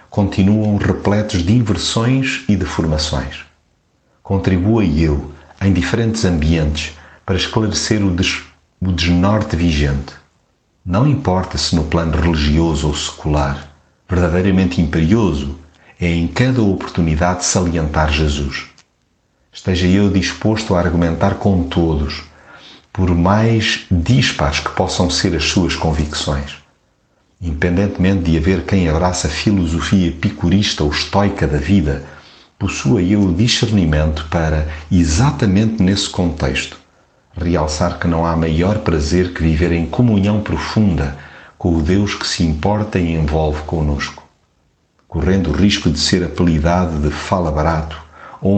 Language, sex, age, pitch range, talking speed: Portuguese, male, 50-69, 80-100 Hz, 120 wpm